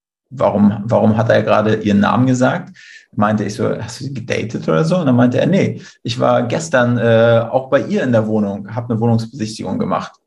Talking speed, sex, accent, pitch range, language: 210 wpm, male, German, 110-130 Hz, German